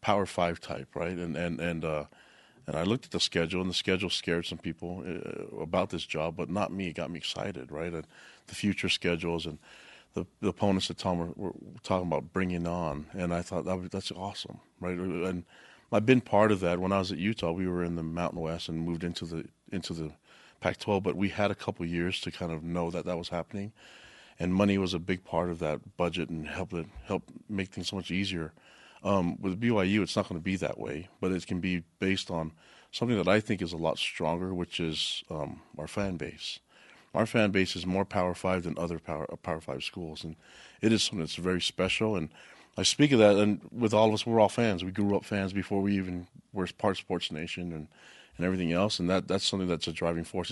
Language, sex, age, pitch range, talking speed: English, male, 30-49, 85-100 Hz, 240 wpm